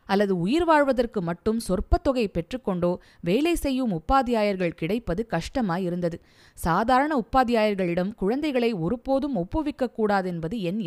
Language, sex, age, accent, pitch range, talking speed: Tamil, female, 20-39, native, 175-250 Hz, 85 wpm